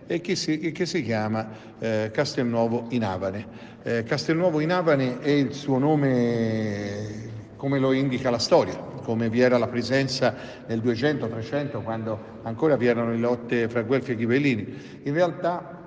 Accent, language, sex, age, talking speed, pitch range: native, Italian, male, 50-69, 155 wpm, 115-145 Hz